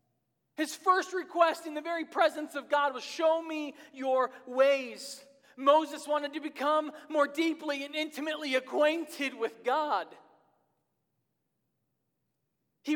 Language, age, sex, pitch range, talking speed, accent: English, 40-59, male, 245-300 Hz, 120 wpm, American